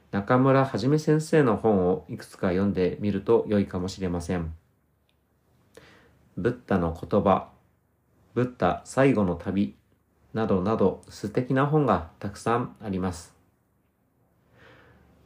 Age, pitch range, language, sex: 40-59, 90-115 Hz, Japanese, male